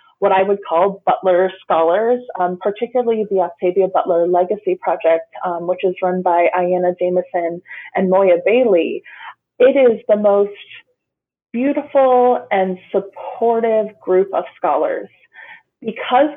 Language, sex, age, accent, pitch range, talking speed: English, female, 30-49, American, 180-215 Hz, 125 wpm